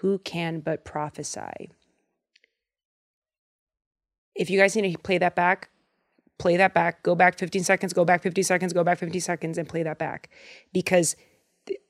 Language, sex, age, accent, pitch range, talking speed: English, female, 30-49, American, 170-210 Hz, 160 wpm